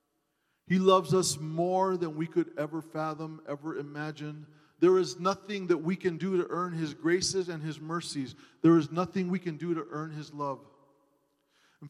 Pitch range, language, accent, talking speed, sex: 150-190 Hz, English, American, 180 wpm, male